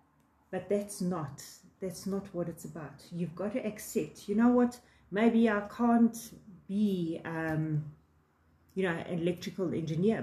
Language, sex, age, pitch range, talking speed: English, female, 40-59, 175-230 Hz, 145 wpm